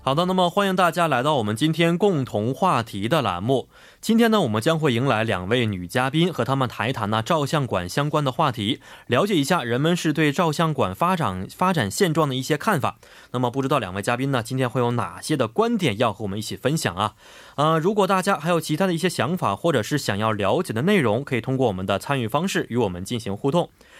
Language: Korean